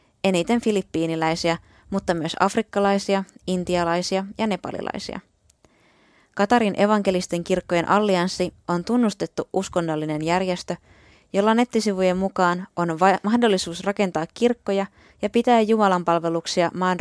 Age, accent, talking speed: 20-39, native, 100 wpm